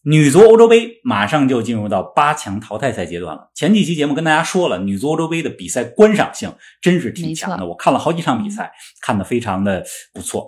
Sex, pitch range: male, 145-220 Hz